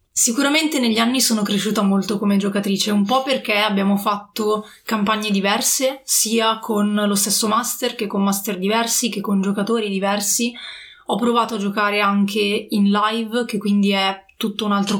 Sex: female